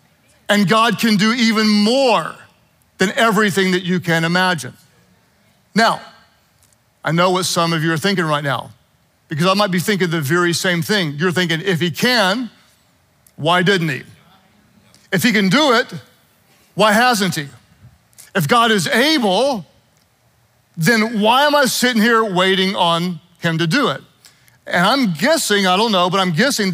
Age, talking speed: 40-59, 165 wpm